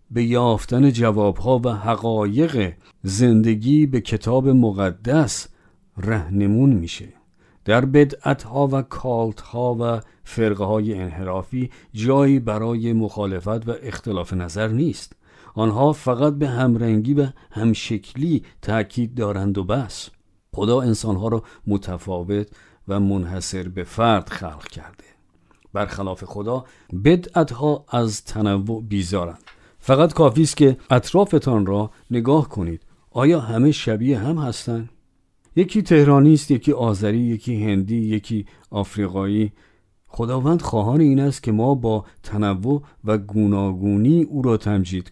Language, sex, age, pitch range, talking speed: Persian, male, 50-69, 100-130 Hz, 115 wpm